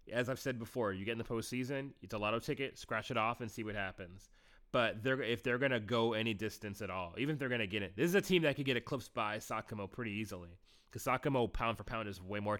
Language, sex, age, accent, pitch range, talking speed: English, male, 30-49, American, 100-115 Hz, 280 wpm